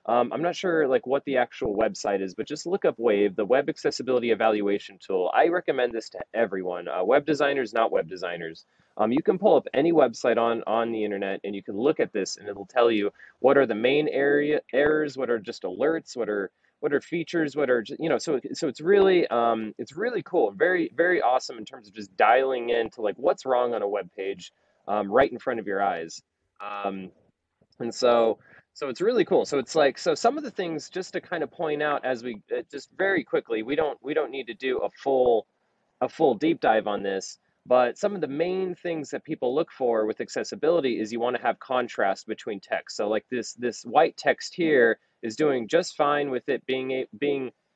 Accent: American